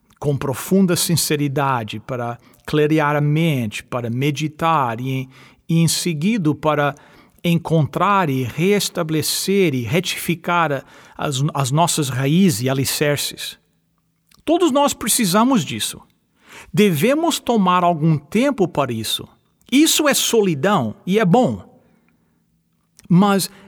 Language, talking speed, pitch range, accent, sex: English, 105 wpm, 145-225 Hz, Brazilian, male